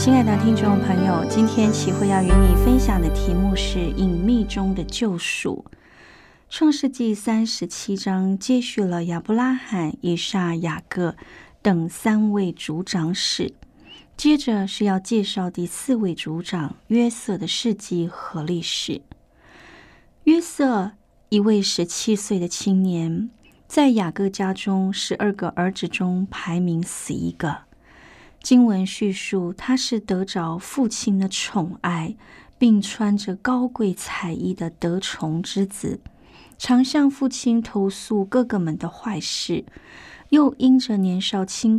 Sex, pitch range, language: female, 180-230 Hz, Chinese